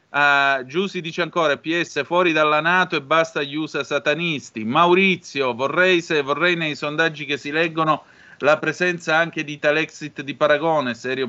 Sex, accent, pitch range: male, native, 140-165 Hz